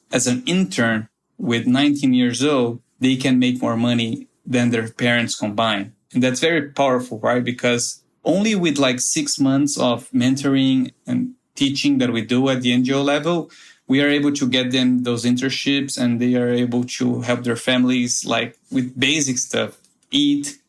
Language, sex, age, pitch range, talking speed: English, male, 20-39, 120-135 Hz, 170 wpm